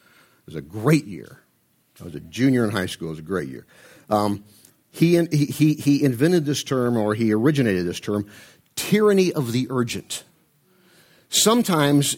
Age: 50-69